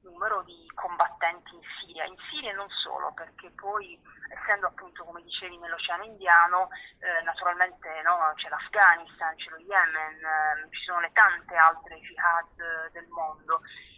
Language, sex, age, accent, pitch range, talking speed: Italian, female, 30-49, native, 170-215 Hz, 145 wpm